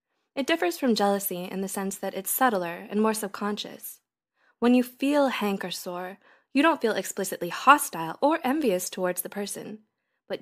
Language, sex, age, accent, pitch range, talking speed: English, female, 20-39, American, 185-235 Hz, 165 wpm